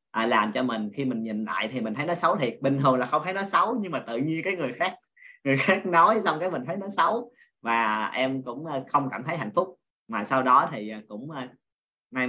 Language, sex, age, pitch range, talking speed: Vietnamese, male, 20-39, 110-150 Hz, 245 wpm